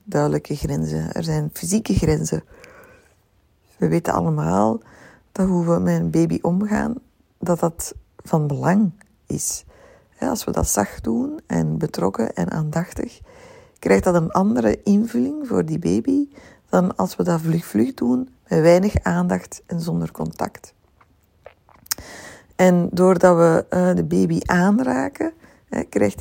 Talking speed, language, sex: 130 wpm, Dutch, female